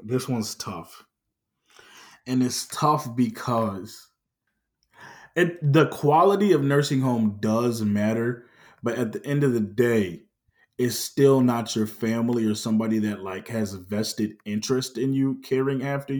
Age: 20-39